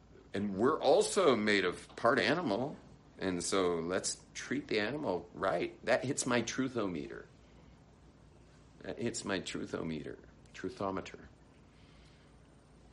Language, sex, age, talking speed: English, male, 50-69, 105 wpm